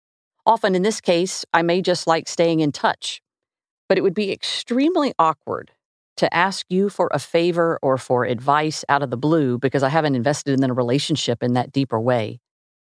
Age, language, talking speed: 50-69, English, 190 wpm